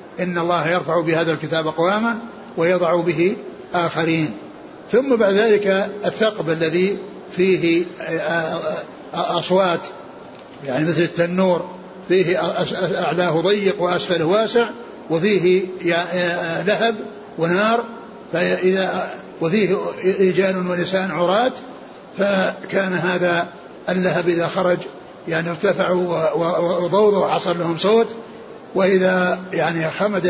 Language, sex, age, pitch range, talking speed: Arabic, male, 60-79, 170-195 Hz, 90 wpm